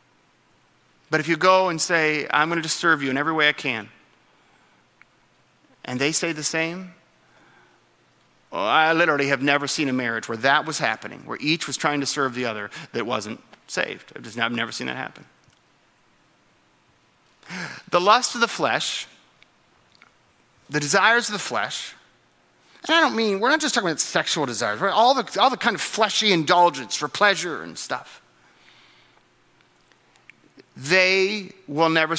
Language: English